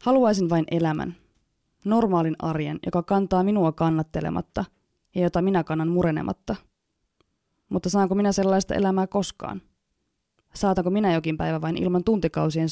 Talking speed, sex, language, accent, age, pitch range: 125 wpm, female, Finnish, native, 20-39, 160-190 Hz